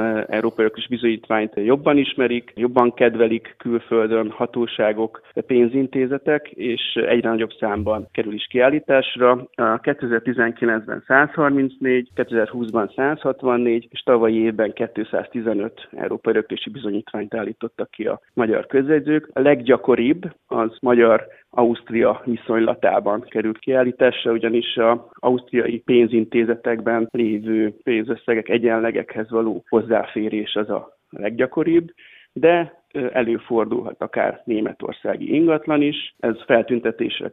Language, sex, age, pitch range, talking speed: Hungarian, male, 30-49, 115-130 Hz, 100 wpm